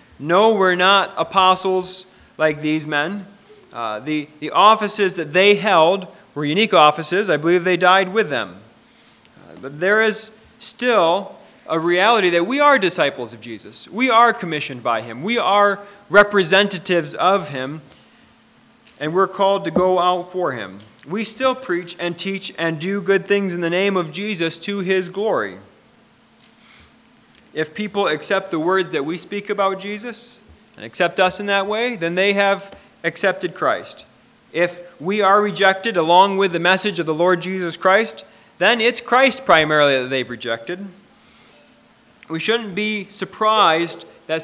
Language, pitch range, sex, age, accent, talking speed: English, 170-210 Hz, male, 30-49, American, 160 wpm